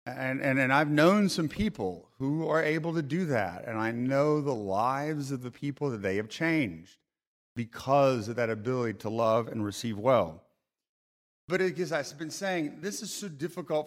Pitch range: 120-165 Hz